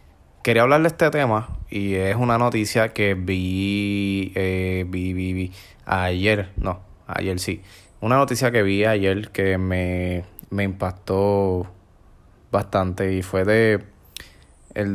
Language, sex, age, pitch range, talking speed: Spanish, male, 20-39, 95-110 Hz, 135 wpm